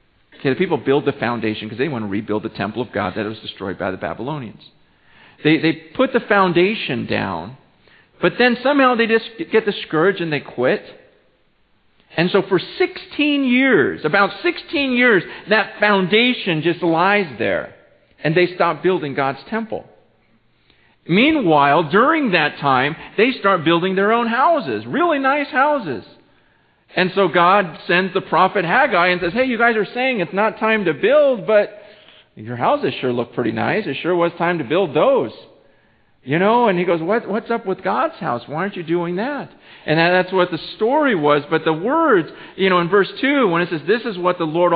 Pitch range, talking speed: 150-215 Hz, 190 wpm